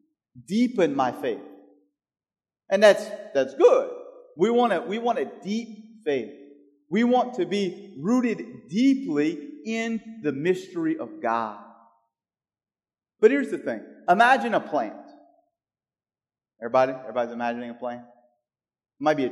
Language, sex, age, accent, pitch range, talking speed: English, male, 30-49, American, 150-230 Hz, 130 wpm